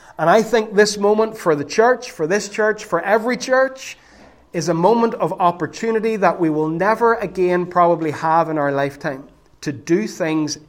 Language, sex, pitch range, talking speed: English, male, 160-205 Hz, 180 wpm